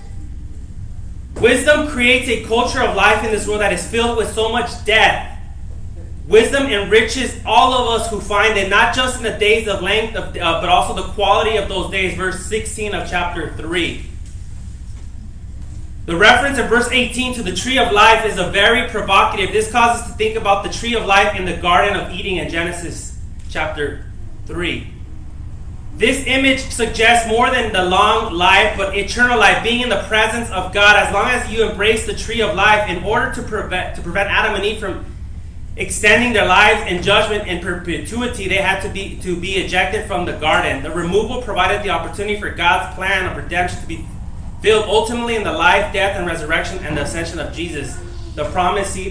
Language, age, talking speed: English, 20-39, 195 wpm